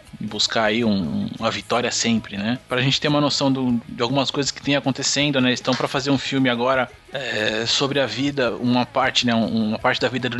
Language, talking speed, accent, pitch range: Portuguese, 220 wpm, Brazilian, 115-135 Hz